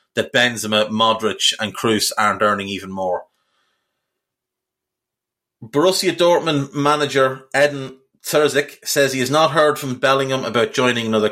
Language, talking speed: English, 125 wpm